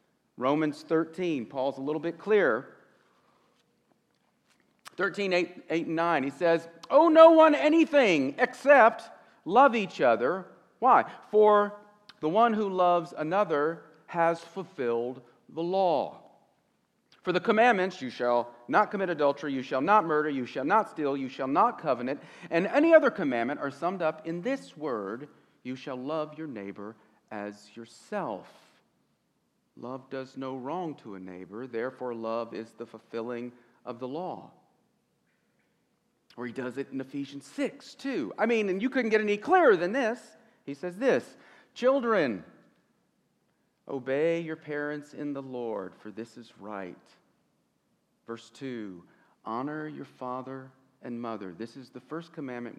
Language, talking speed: English, 145 wpm